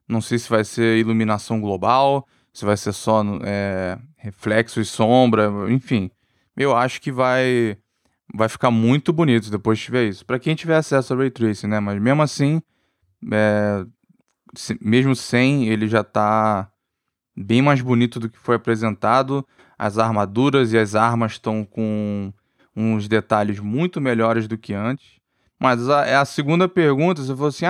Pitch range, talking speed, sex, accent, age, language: 110-145 Hz, 160 wpm, male, Brazilian, 20-39, Portuguese